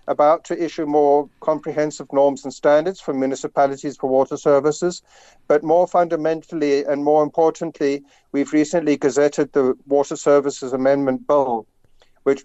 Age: 60-79